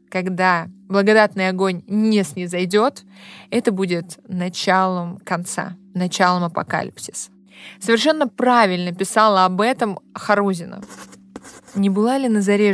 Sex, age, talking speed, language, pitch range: female, 20-39, 105 wpm, Russian, 185-215 Hz